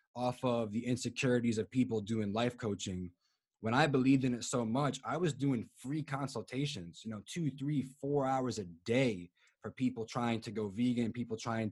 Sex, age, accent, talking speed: male, 20-39, American, 190 wpm